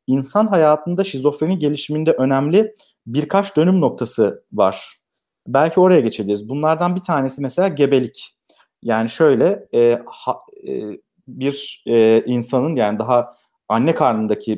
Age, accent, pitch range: 40-59, native, 120-165 Hz